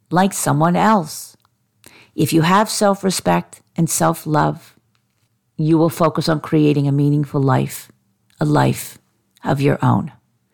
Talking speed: 125 wpm